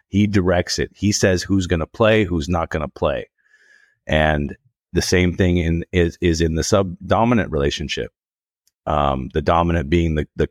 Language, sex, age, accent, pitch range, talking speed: English, male, 30-49, American, 80-100 Hz, 170 wpm